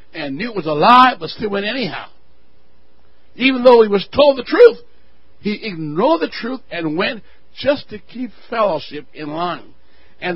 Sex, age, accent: male, 60-79, American